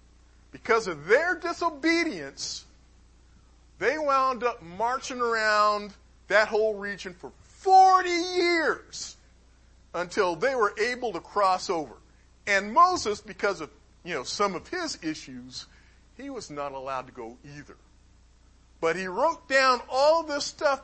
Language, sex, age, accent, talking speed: English, male, 40-59, American, 130 wpm